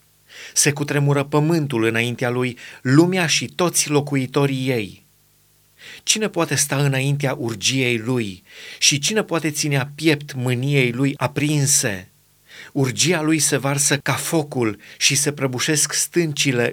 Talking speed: 125 wpm